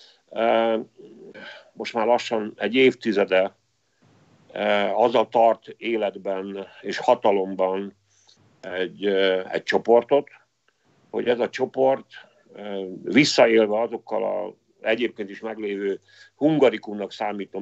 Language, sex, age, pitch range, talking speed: Hungarian, male, 50-69, 105-125 Hz, 90 wpm